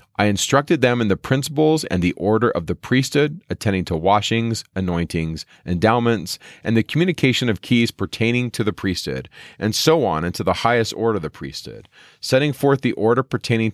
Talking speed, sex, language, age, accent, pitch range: 180 wpm, male, English, 40-59, American, 90-120 Hz